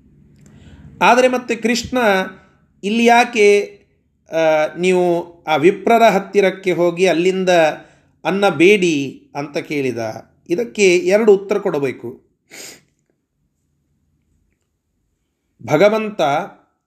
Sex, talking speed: male, 70 wpm